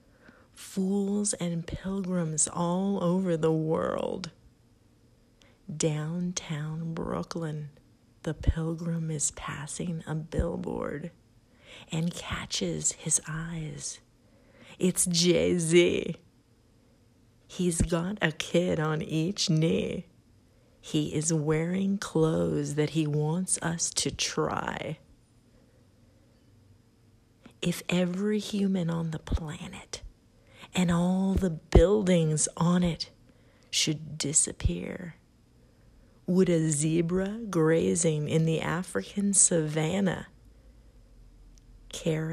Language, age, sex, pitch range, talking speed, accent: English, 40-59, female, 120-170 Hz, 90 wpm, American